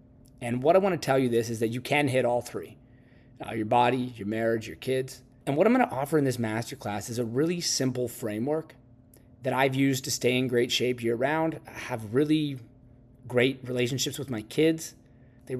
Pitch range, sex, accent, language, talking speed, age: 120-145 Hz, male, American, English, 210 wpm, 30-49